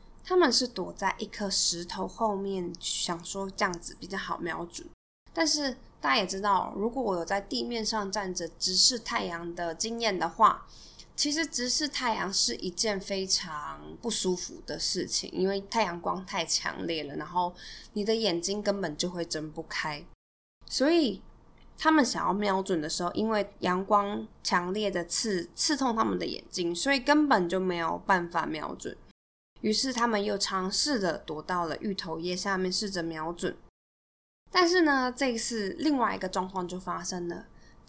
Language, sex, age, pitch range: Chinese, female, 20-39, 175-225 Hz